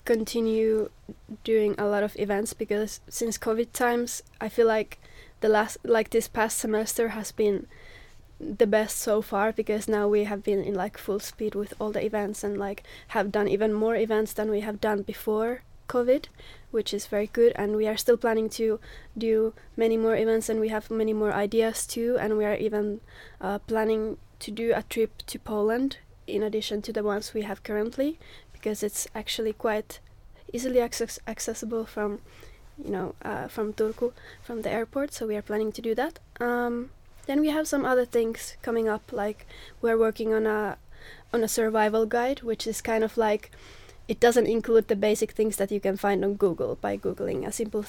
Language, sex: Finnish, female